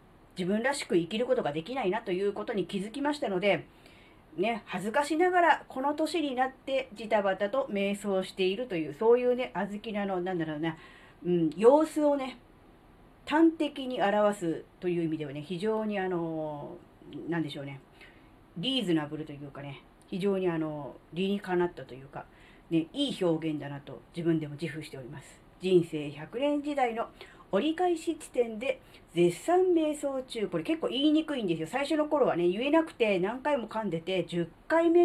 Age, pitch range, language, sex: 40-59, 165-255 Hz, Japanese, female